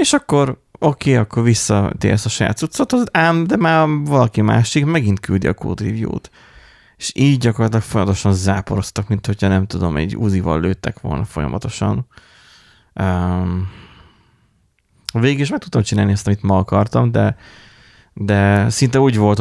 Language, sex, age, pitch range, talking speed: Hungarian, male, 20-39, 95-115 Hz, 145 wpm